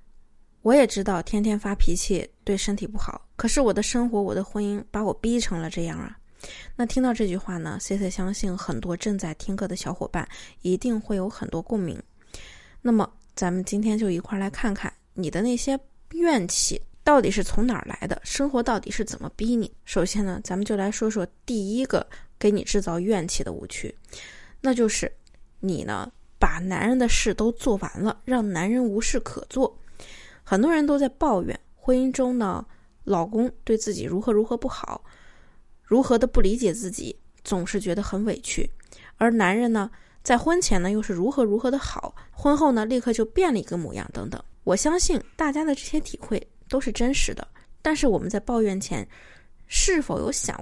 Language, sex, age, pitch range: Chinese, female, 20-39, 195-250 Hz